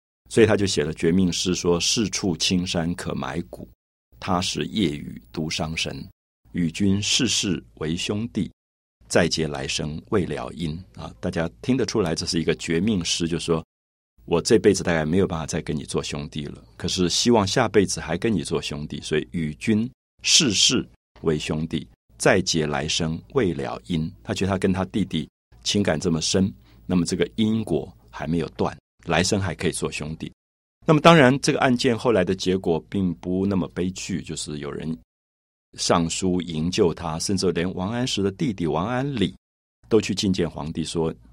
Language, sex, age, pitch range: Chinese, male, 50-69, 75-95 Hz